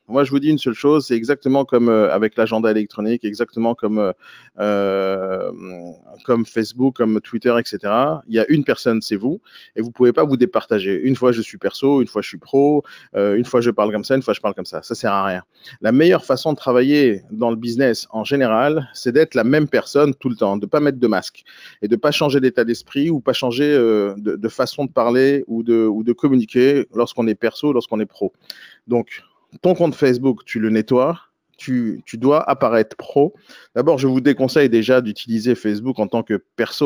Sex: male